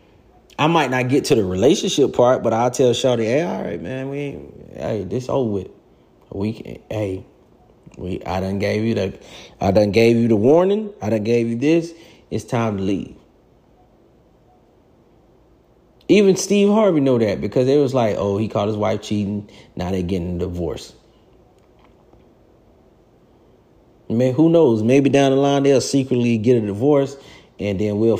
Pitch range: 100-135 Hz